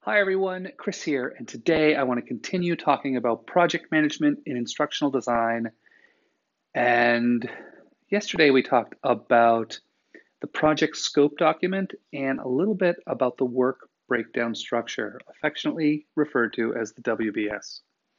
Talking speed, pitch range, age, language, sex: 135 wpm, 125-180 Hz, 40-59, English, male